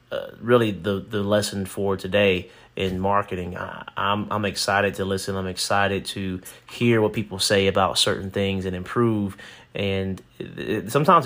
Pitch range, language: 95-115 Hz, English